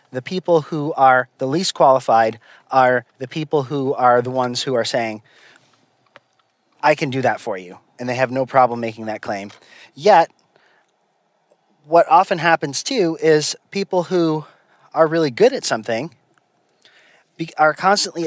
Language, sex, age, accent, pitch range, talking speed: English, male, 30-49, American, 125-160 Hz, 150 wpm